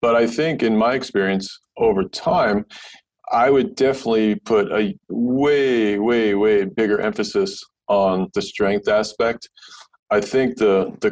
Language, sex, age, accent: English, male, 40-59, American